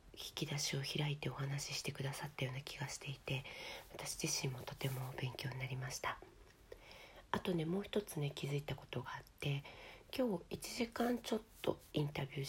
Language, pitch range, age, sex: Japanese, 140-180 Hz, 40-59, female